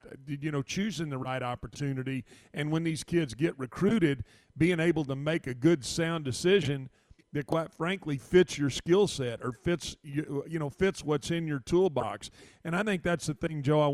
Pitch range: 135-155 Hz